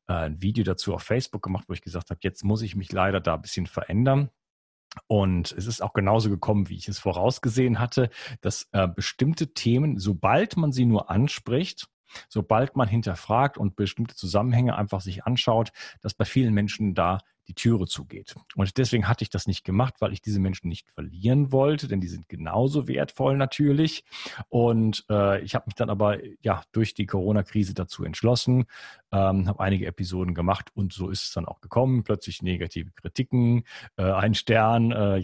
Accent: German